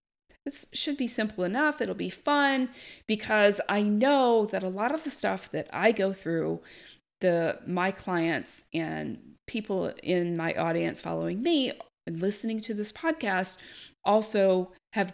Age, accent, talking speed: 40-59, American, 150 wpm